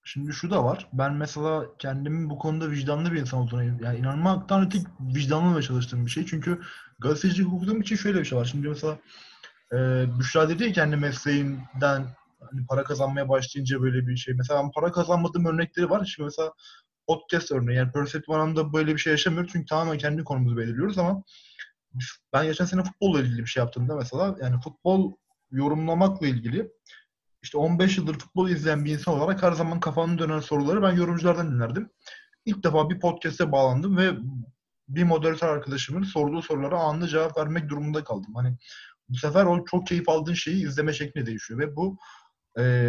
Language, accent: Turkish, native